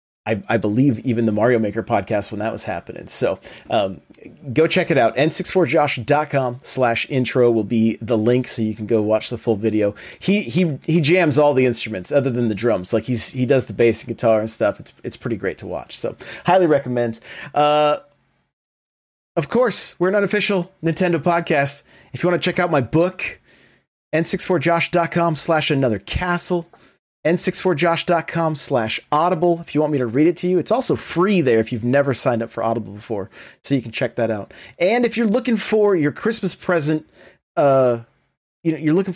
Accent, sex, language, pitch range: American, male, English, 120-180 Hz